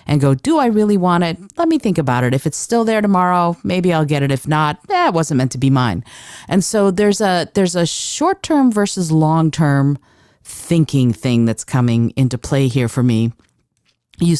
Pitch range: 130-180 Hz